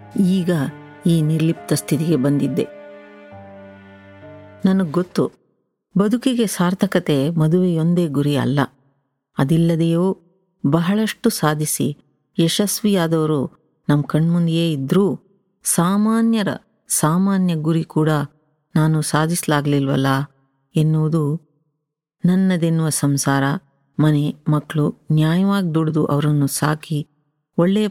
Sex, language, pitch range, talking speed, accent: female, Kannada, 150-180 Hz, 75 wpm, native